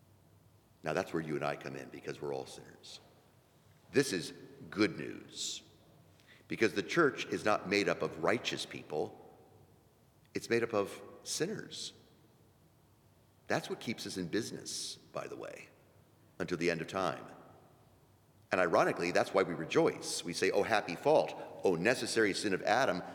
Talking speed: 160 wpm